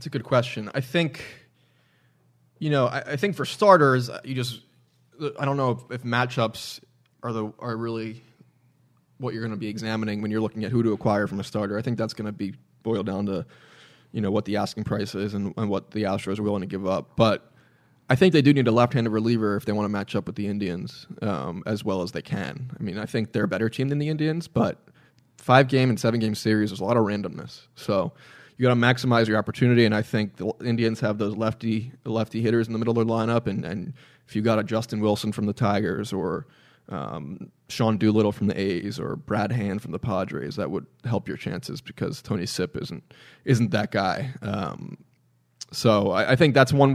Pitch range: 105-125 Hz